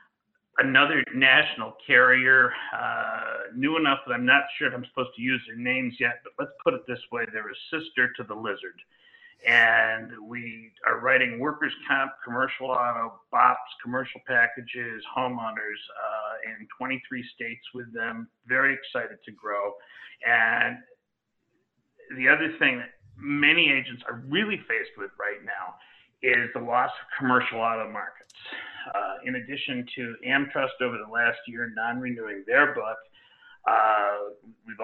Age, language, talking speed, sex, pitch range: 50-69, English, 150 wpm, male, 115-135 Hz